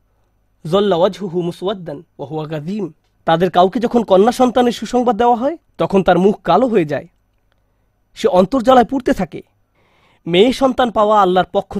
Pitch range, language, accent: 170-240 Hz, Bengali, native